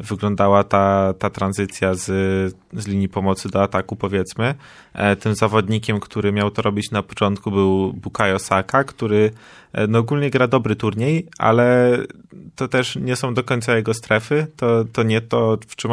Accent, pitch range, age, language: native, 100-115 Hz, 20-39, Polish